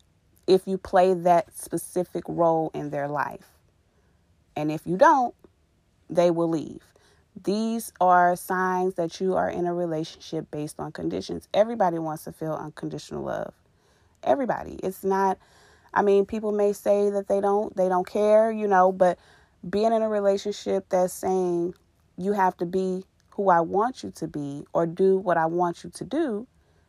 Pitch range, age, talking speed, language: 145-190 Hz, 30-49, 165 wpm, English